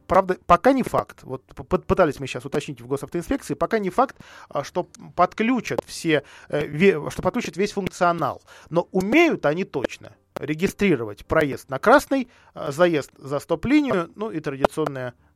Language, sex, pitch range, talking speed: Russian, male, 140-190 Hz, 135 wpm